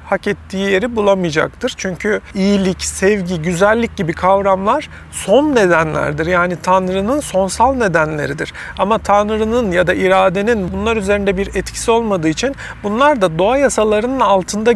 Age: 40-59